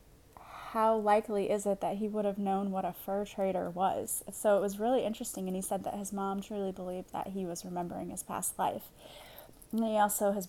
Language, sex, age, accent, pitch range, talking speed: English, female, 20-39, American, 190-215 Hz, 215 wpm